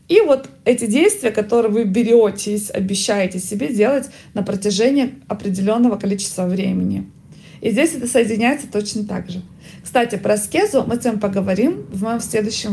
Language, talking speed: Russian, 150 wpm